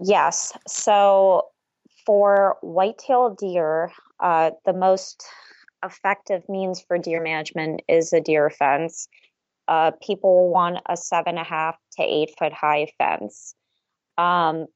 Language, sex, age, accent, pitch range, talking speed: English, female, 20-39, American, 165-195 Hz, 125 wpm